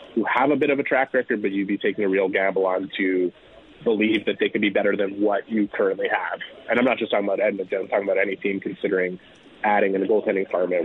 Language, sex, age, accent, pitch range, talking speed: English, male, 20-39, American, 95-110 Hz, 255 wpm